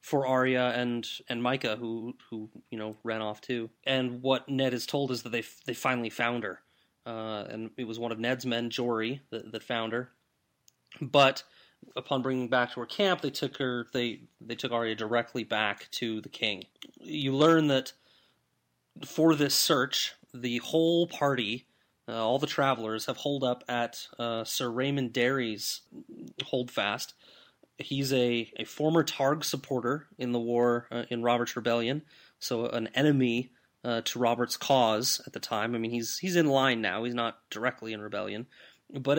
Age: 30-49